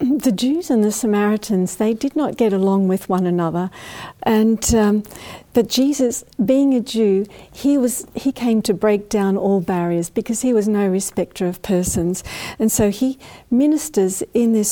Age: 50-69